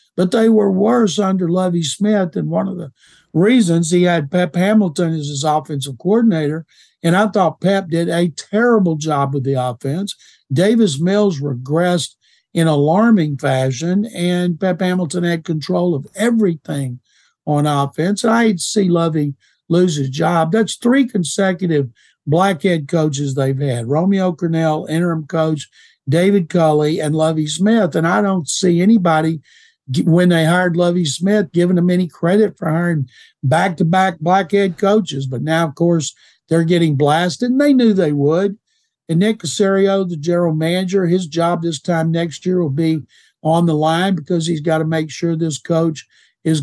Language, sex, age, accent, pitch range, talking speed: English, male, 60-79, American, 155-190 Hz, 160 wpm